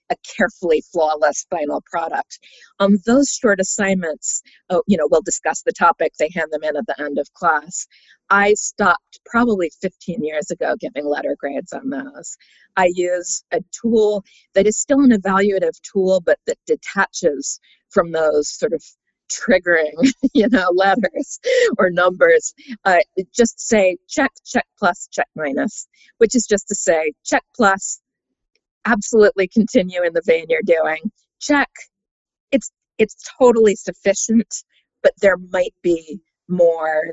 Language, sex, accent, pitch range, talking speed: English, female, American, 180-260 Hz, 145 wpm